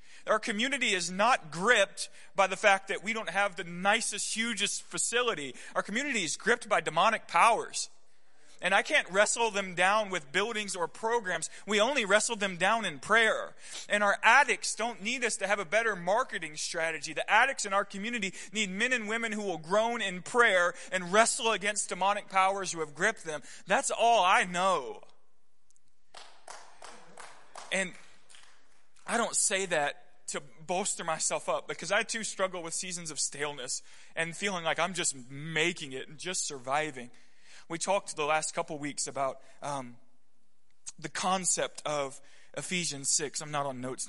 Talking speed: 165 wpm